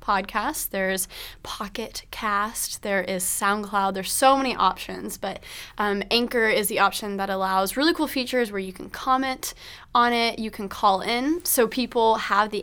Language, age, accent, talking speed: English, 20-39, American, 170 wpm